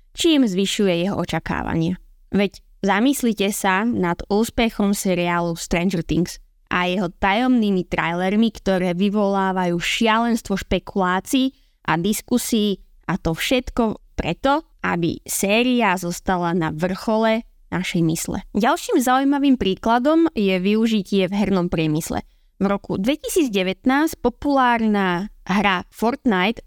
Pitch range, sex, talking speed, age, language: 185-240 Hz, female, 105 wpm, 20-39, Slovak